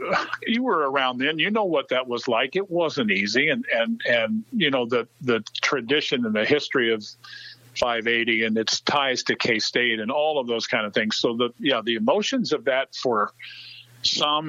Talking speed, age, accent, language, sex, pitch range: 200 wpm, 50-69, American, English, male, 115-140 Hz